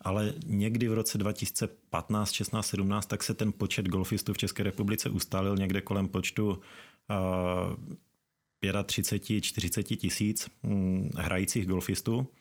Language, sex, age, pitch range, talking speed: Czech, male, 30-49, 95-105 Hz, 110 wpm